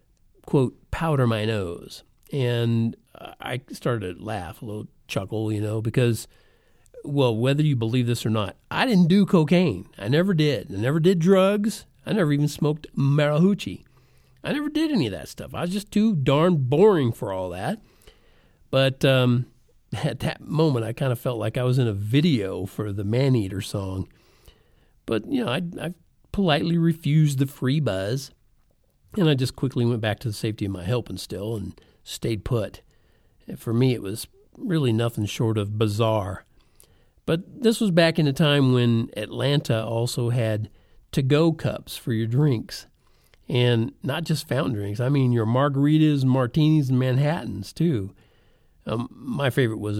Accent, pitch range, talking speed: American, 110-155 Hz, 170 wpm